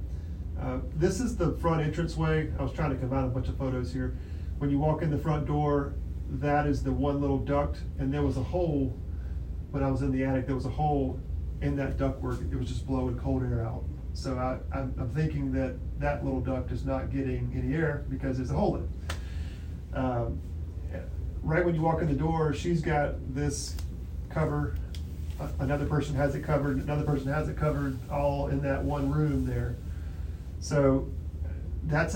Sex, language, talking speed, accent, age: male, English, 195 wpm, American, 40-59